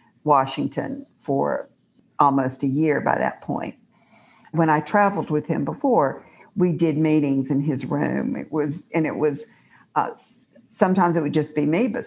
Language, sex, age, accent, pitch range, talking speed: English, female, 60-79, American, 150-210 Hz, 165 wpm